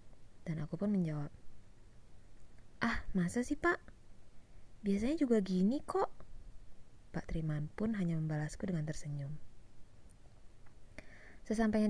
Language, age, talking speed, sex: Indonesian, 20-39, 100 wpm, female